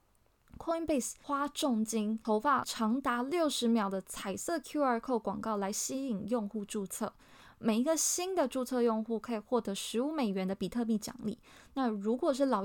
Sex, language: female, Chinese